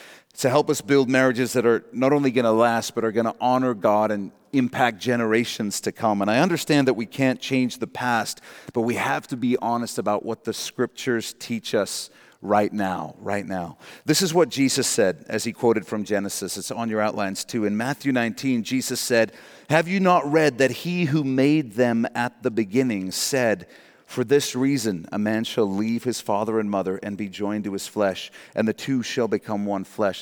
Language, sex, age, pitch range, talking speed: English, male, 40-59, 105-130 Hz, 210 wpm